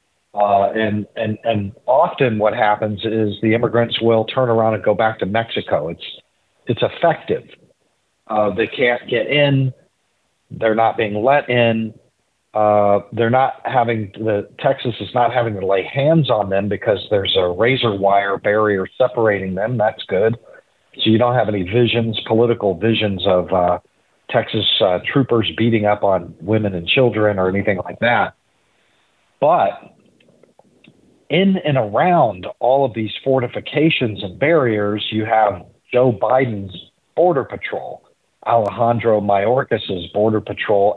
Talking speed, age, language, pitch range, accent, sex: 140 wpm, 50-69, English, 105-125 Hz, American, male